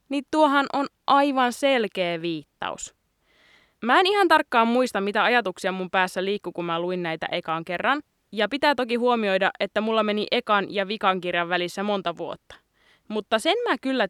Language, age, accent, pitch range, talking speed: Finnish, 20-39, native, 185-280 Hz, 165 wpm